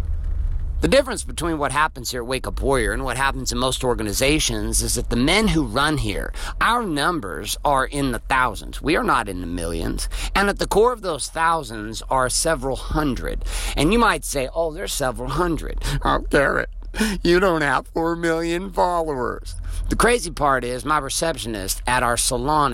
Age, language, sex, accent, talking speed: 50-69, English, male, American, 185 wpm